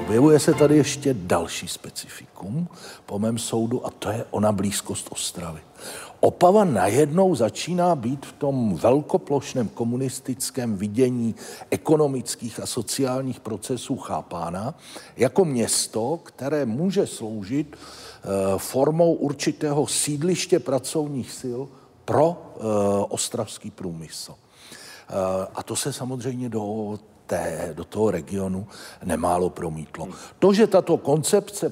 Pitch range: 105-145 Hz